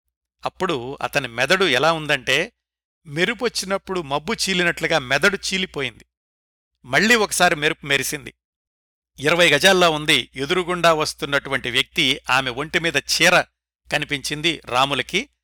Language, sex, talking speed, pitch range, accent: Telugu, male, 95 wpm, 125-175 Hz, native